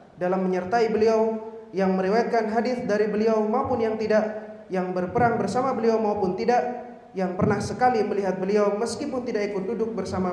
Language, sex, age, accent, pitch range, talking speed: Indonesian, male, 30-49, native, 185-230 Hz, 155 wpm